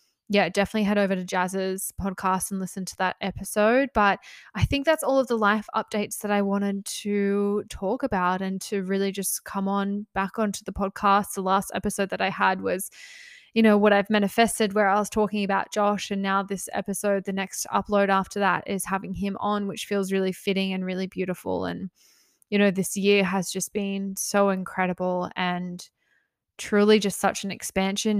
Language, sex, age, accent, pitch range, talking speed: English, female, 10-29, Australian, 190-210 Hz, 195 wpm